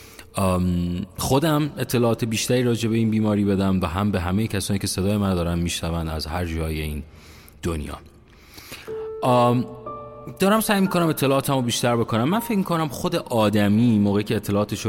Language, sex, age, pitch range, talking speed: Persian, male, 30-49, 95-125 Hz, 155 wpm